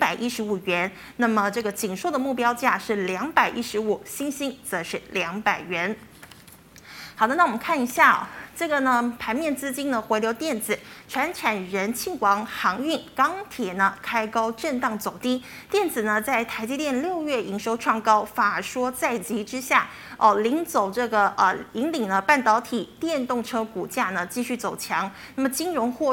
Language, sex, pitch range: Chinese, female, 210-270 Hz